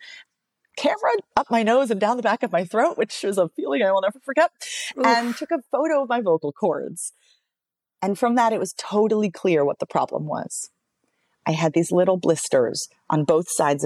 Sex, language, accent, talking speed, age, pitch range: female, English, American, 200 wpm, 40-59, 145-225 Hz